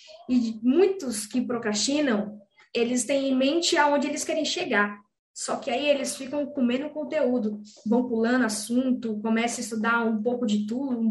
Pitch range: 225-310 Hz